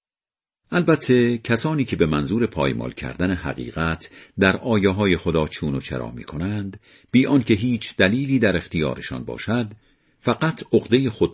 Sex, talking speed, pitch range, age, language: male, 145 wpm, 80-115 Hz, 50-69, Persian